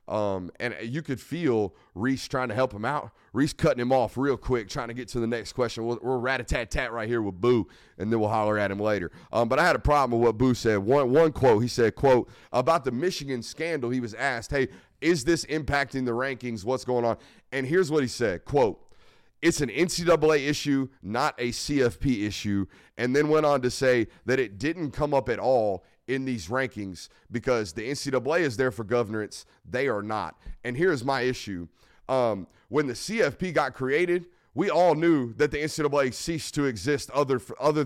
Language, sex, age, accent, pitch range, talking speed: English, male, 30-49, American, 120-150 Hz, 210 wpm